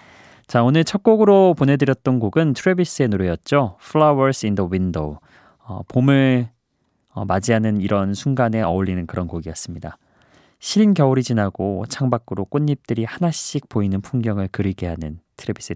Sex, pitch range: male, 100-145 Hz